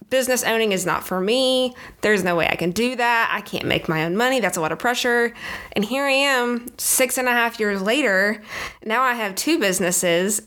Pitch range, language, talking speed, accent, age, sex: 195-245 Hz, English, 225 wpm, American, 20-39, female